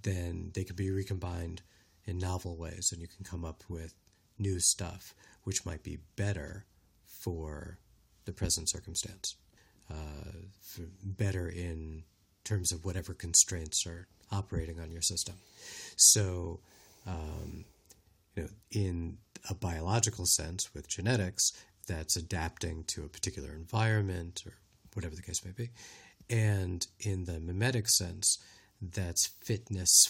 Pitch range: 85-100 Hz